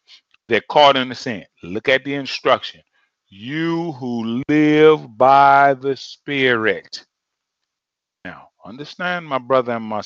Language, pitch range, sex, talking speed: English, 130-170 Hz, male, 125 wpm